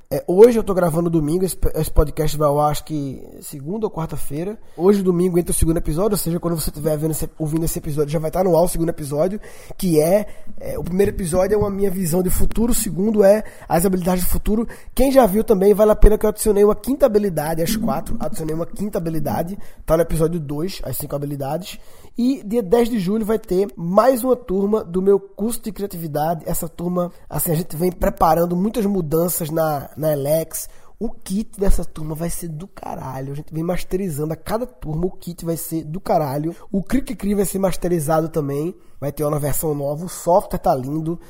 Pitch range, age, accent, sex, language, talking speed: 160-205 Hz, 20-39, Brazilian, male, Portuguese, 210 wpm